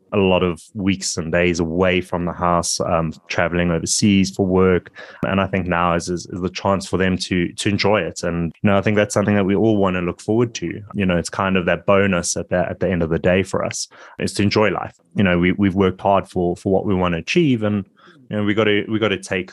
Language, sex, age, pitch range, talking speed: English, male, 20-39, 90-105 Hz, 275 wpm